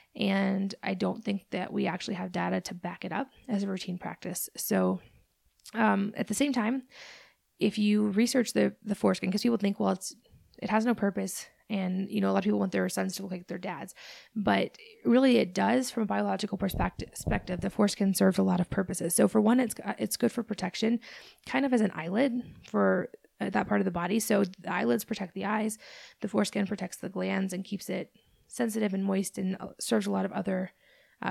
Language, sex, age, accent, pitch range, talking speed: English, female, 20-39, American, 190-225 Hz, 215 wpm